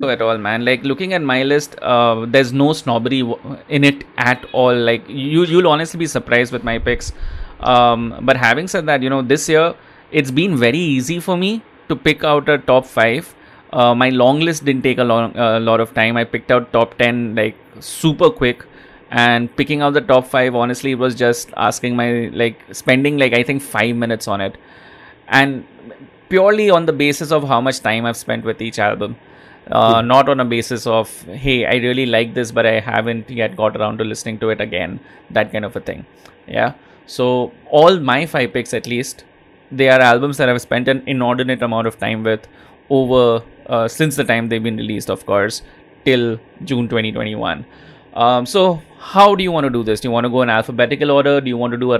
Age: 20-39